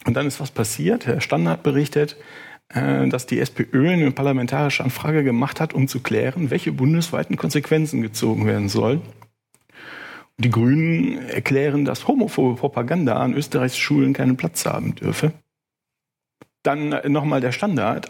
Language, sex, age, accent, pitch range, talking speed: German, male, 50-69, German, 125-165 Hz, 140 wpm